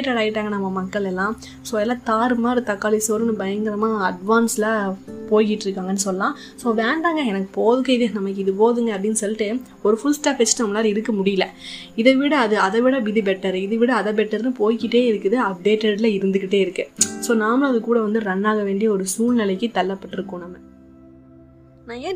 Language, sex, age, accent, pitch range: Tamil, female, 20-39, native, 185-225 Hz